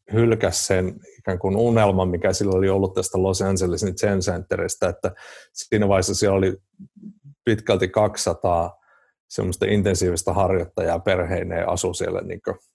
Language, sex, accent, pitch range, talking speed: Finnish, male, native, 90-105 Hz, 120 wpm